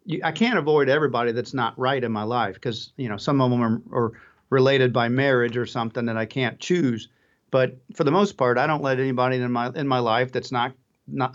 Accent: American